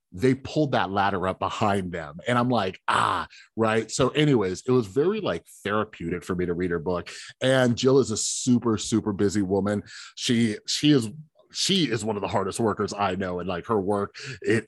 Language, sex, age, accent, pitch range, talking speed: English, male, 30-49, American, 95-115 Hz, 205 wpm